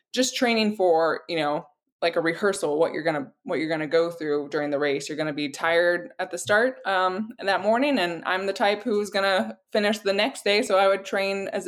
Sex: female